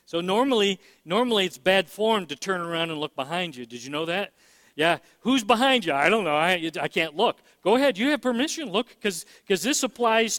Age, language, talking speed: 50-69, English, 215 wpm